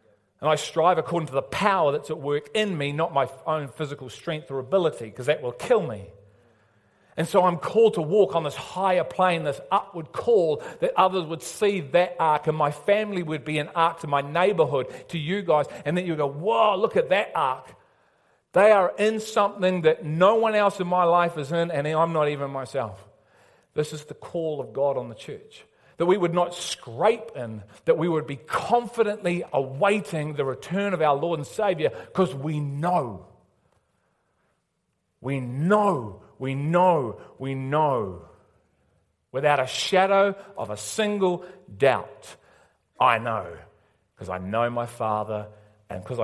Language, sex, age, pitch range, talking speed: English, male, 40-59, 110-180 Hz, 175 wpm